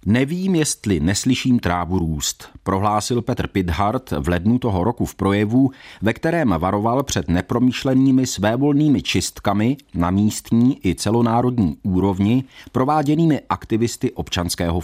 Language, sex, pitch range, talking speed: Czech, male, 90-130 Hz, 115 wpm